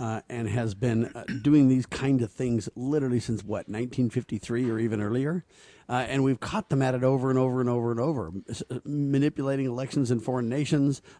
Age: 50-69